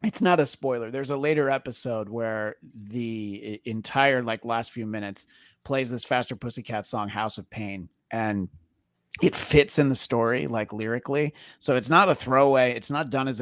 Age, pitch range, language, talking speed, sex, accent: 30-49, 110-145 Hz, English, 180 wpm, male, American